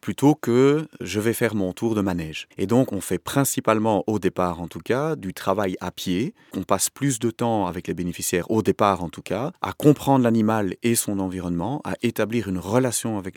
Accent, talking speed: French, 220 wpm